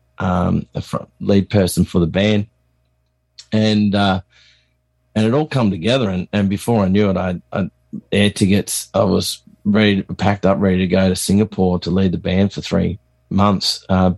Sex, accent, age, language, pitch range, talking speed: male, Australian, 30-49, English, 95-110 Hz, 180 wpm